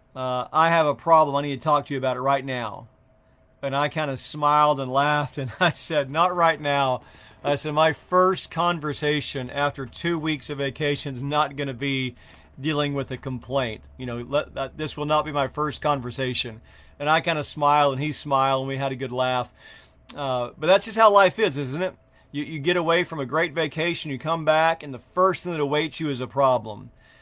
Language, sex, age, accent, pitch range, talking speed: English, male, 40-59, American, 130-155 Hz, 225 wpm